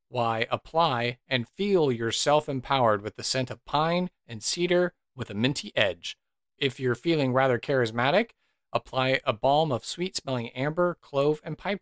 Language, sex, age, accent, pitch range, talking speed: English, male, 40-59, American, 120-155 Hz, 155 wpm